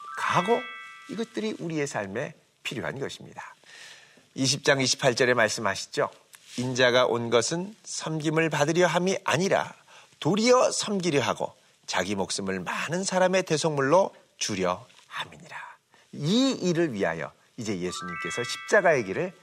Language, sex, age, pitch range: Korean, male, 40-59, 130-180 Hz